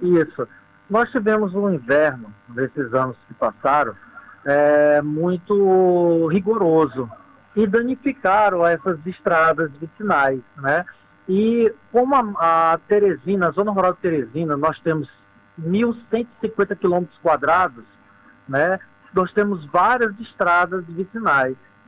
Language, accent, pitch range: Portuguese, Brazilian, 155-205 Hz